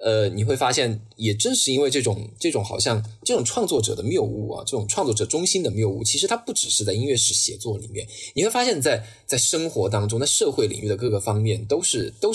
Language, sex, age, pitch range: Chinese, male, 20-39, 105-125 Hz